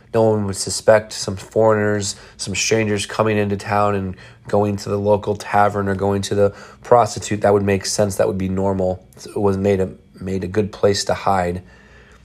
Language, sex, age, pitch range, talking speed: English, male, 30-49, 105-120 Hz, 190 wpm